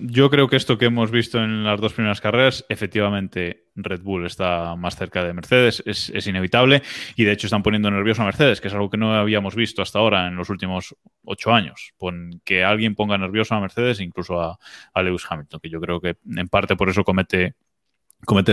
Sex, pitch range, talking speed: male, 95-120 Hz, 215 wpm